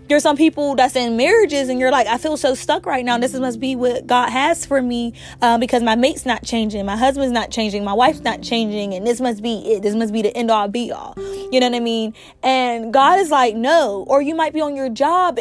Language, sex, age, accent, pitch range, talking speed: English, female, 20-39, American, 225-280 Hz, 260 wpm